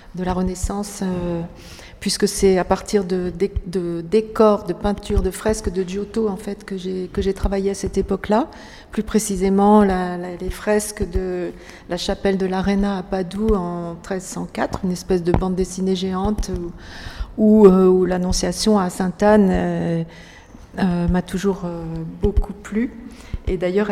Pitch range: 185-210 Hz